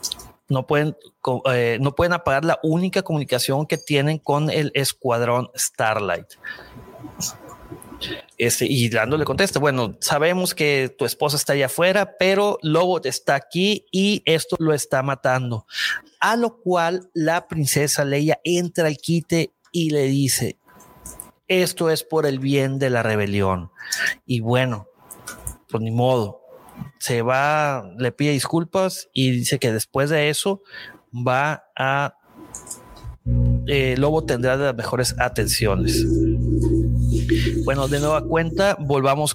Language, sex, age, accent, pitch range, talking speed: Spanish, male, 30-49, Mexican, 125-160 Hz, 135 wpm